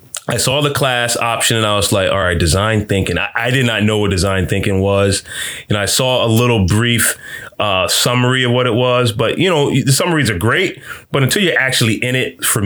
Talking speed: 230 wpm